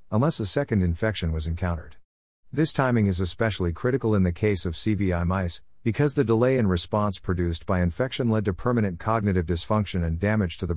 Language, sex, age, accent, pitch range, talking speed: English, male, 50-69, American, 90-115 Hz, 190 wpm